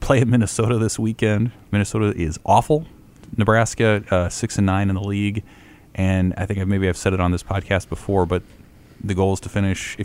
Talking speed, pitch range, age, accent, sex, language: 210 wpm, 90-105 Hz, 30-49, American, male, English